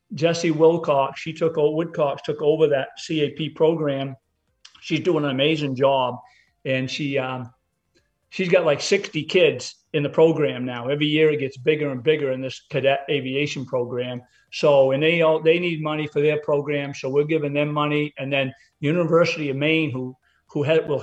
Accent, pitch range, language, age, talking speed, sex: American, 130-155 Hz, English, 50-69, 180 wpm, male